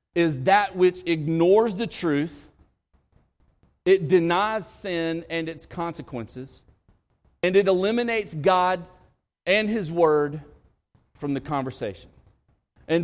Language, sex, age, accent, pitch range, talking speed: English, male, 40-59, American, 120-175 Hz, 105 wpm